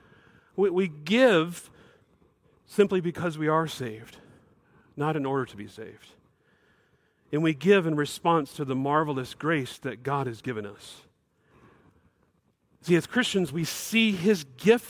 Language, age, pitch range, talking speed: English, 40-59, 150-195 Hz, 140 wpm